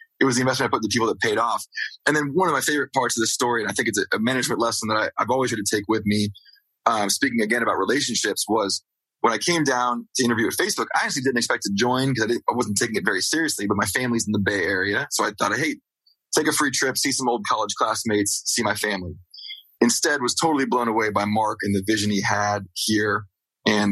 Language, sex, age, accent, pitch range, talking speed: English, male, 20-39, American, 100-120 Hz, 255 wpm